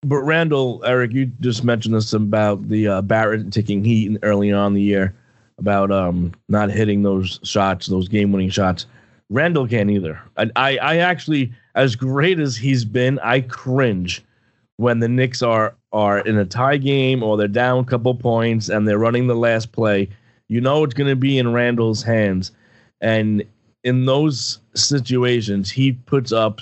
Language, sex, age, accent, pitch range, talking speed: English, male, 30-49, American, 110-130 Hz, 175 wpm